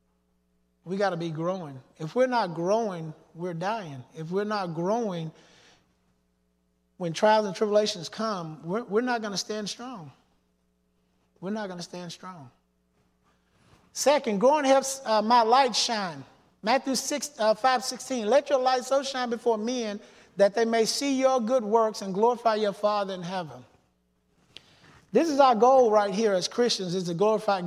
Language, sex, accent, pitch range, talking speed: English, male, American, 165-230 Hz, 165 wpm